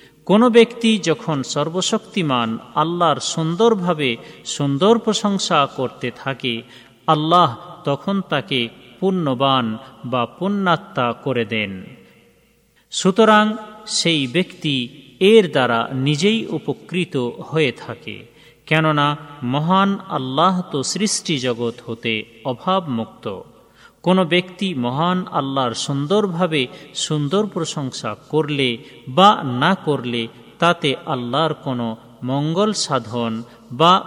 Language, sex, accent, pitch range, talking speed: Bengali, male, native, 125-185 Hz, 90 wpm